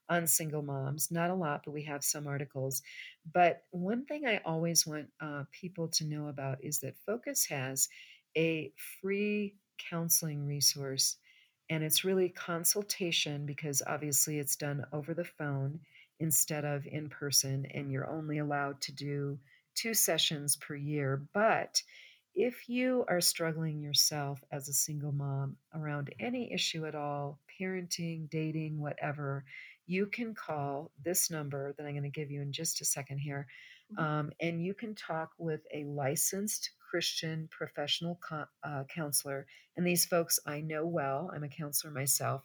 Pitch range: 145-170 Hz